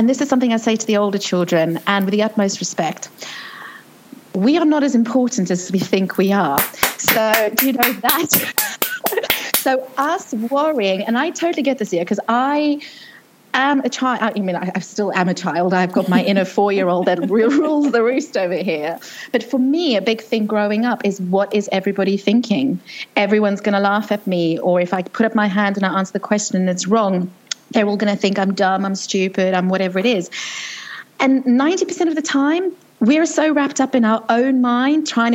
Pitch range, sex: 200-265 Hz, female